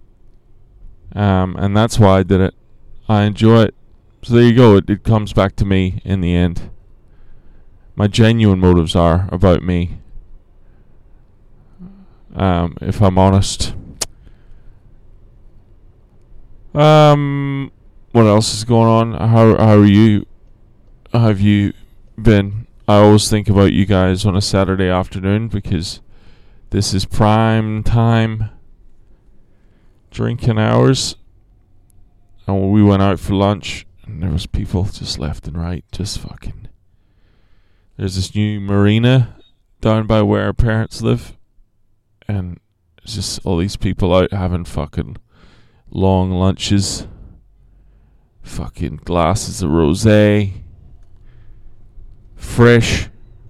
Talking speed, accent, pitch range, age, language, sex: 120 wpm, American, 95-110 Hz, 20-39, English, male